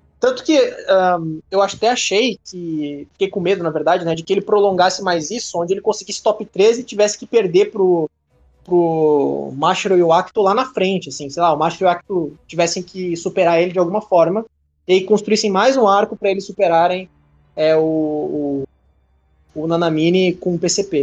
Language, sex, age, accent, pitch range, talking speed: Portuguese, male, 20-39, Brazilian, 155-195 Hz, 185 wpm